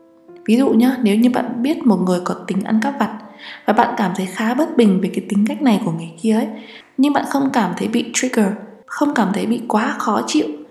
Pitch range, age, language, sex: 195-240 Hz, 20-39, Vietnamese, female